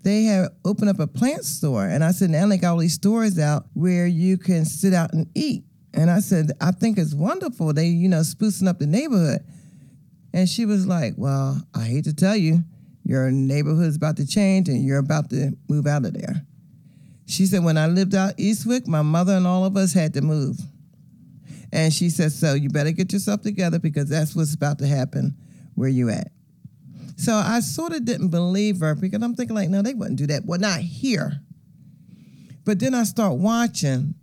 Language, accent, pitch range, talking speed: English, American, 150-195 Hz, 210 wpm